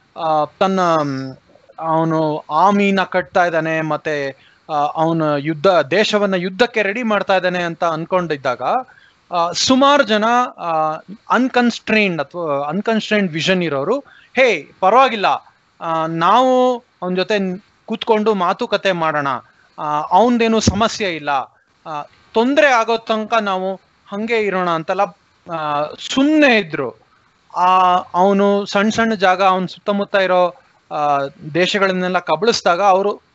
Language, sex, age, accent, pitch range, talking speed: Kannada, male, 20-39, native, 160-220 Hz, 105 wpm